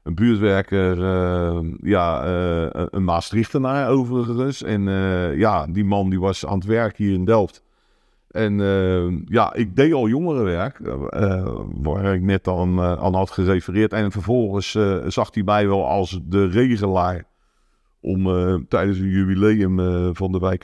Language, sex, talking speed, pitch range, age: English, male, 165 wpm, 90-105 Hz, 50-69